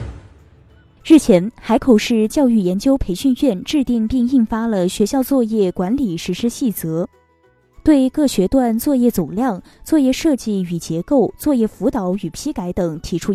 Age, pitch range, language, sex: 20-39, 185-265 Hz, Chinese, female